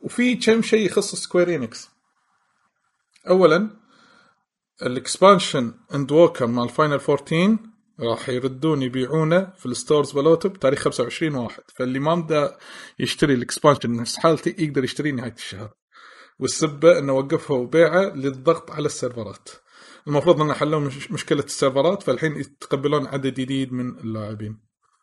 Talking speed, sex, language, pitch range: 115 wpm, male, Arabic, 125-170 Hz